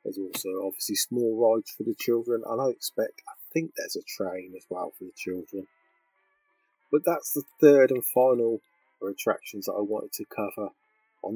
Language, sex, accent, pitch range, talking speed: English, male, British, 95-150 Hz, 180 wpm